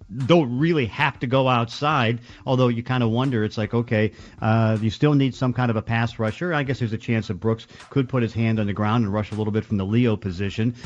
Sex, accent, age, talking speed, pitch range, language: male, American, 50-69, 260 wpm, 110-130 Hz, English